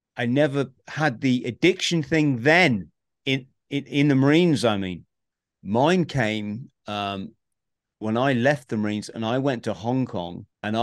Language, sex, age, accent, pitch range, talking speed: English, male, 40-59, British, 105-130 Hz, 160 wpm